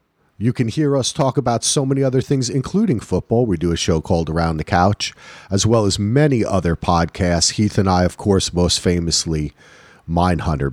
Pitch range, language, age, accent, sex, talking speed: 90-125 Hz, English, 40-59, American, male, 190 wpm